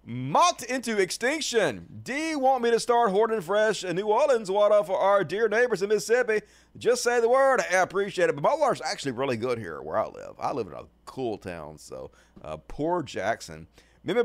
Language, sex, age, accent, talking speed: English, male, 30-49, American, 200 wpm